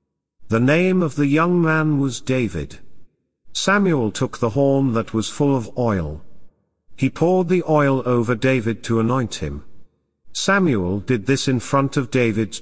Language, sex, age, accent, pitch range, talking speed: English, male, 50-69, British, 105-150 Hz, 155 wpm